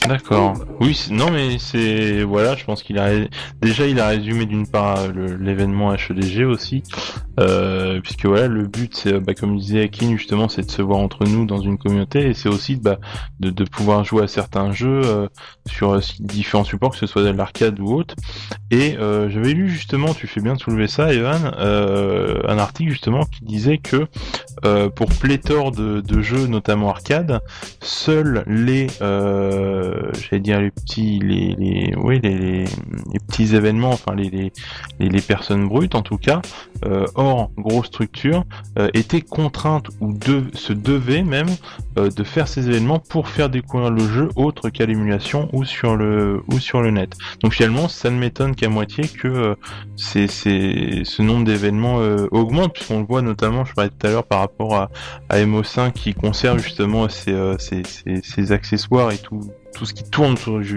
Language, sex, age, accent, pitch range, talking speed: French, male, 20-39, French, 100-130 Hz, 190 wpm